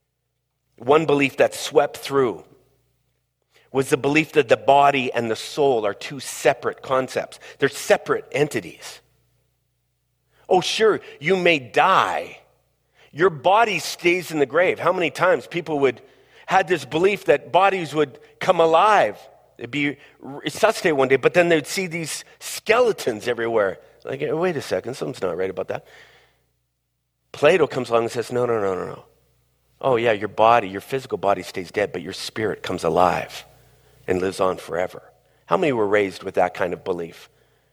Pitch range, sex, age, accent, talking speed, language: 125-160 Hz, male, 40-59, American, 165 wpm, English